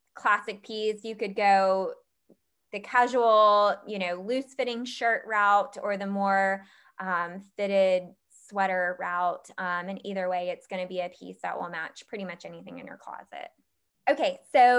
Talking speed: 165 wpm